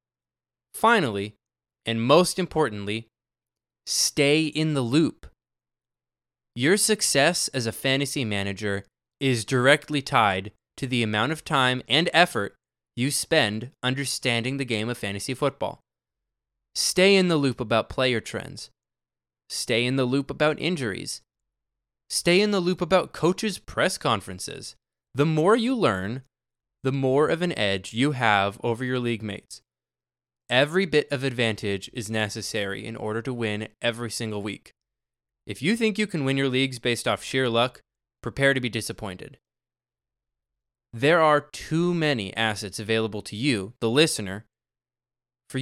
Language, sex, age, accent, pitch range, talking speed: English, male, 20-39, American, 105-150 Hz, 140 wpm